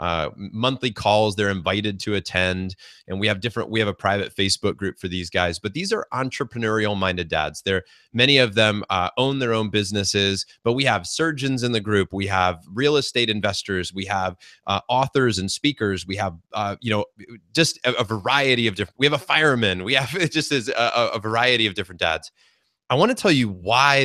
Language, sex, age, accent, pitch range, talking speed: English, male, 30-49, American, 95-125 Hz, 210 wpm